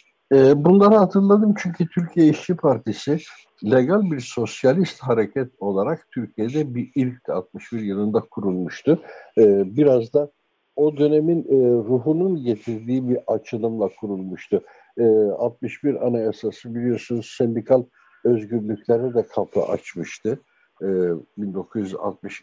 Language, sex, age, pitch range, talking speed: Turkish, male, 60-79, 105-135 Hz, 95 wpm